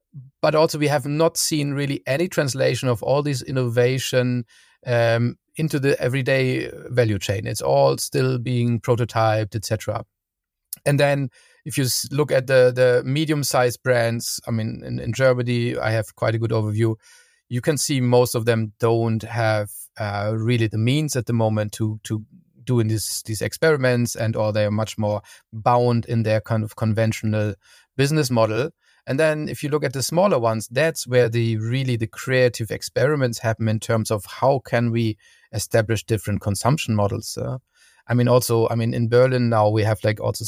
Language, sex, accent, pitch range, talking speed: English, male, German, 110-125 Hz, 180 wpm